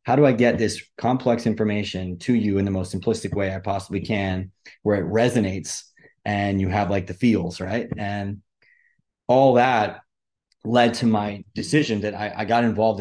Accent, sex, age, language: American, male, 30-49, English